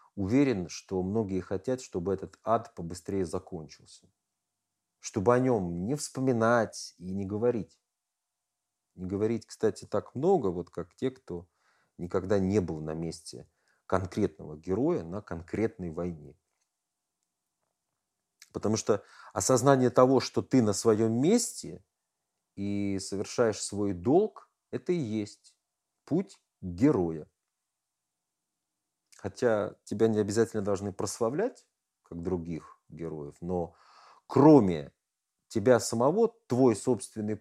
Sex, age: male, 40-59